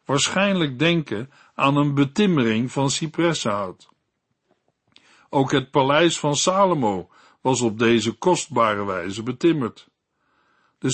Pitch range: 130-170 Hz